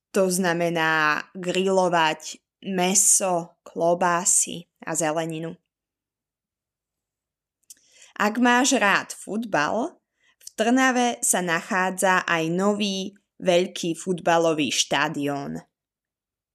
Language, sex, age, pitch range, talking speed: Slovak, female, 20-39, 170-225 Hz, 75 wpm